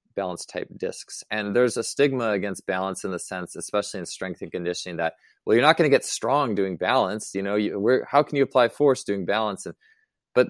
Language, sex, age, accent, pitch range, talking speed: English, male, 20-39, American, 90-110 Hz, 225 wpm